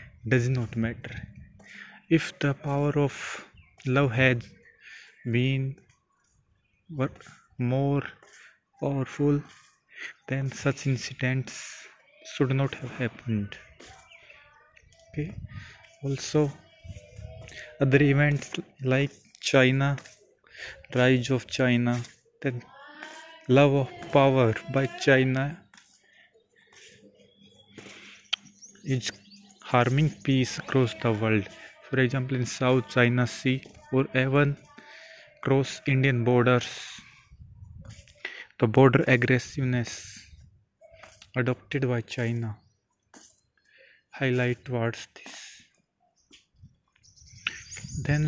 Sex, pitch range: male, 120-145 Hz